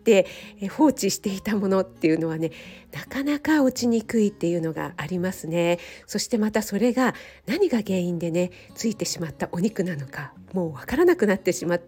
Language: Japanese